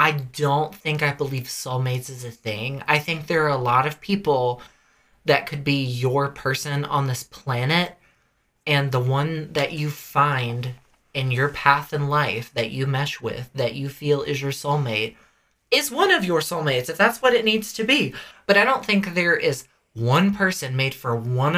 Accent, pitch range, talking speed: American, 125-155 Hz, 190 wpm